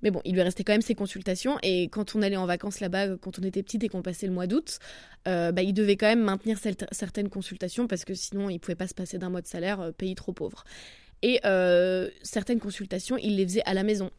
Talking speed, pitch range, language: 265 wpm, 185-225 Hz, French